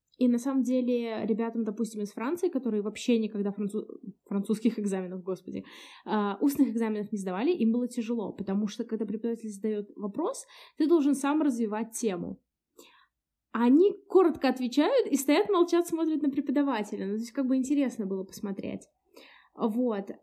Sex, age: female, 20-39